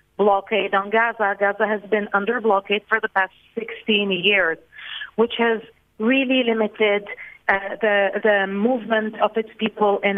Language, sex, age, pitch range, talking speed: English, female, 40-59, 205-235 Hz, 145 wpm